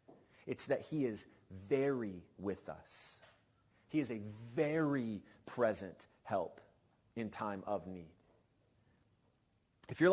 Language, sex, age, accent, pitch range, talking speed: English, male, 30-49, American, 115-150 Hz, 115 wpm